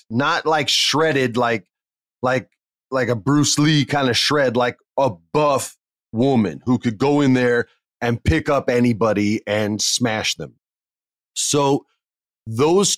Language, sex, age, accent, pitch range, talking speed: English, male, 30-49, American, 110-140 Hz, 140 wpm